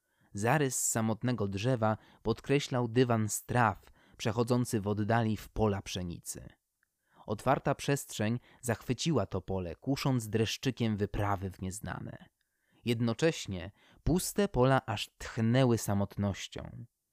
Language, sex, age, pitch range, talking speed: Polish, male, 20-39, 105-130 Hz, 100 wpm